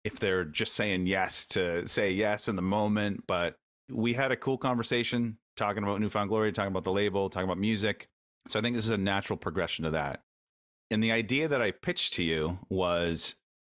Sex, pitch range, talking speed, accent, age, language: male, 90-115 Hz, 205 wpm, American, 30-49, English